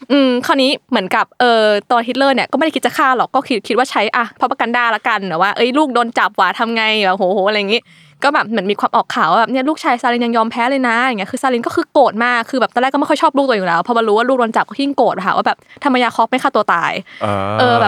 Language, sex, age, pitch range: Thai, female, 20-39, 200-250 Hz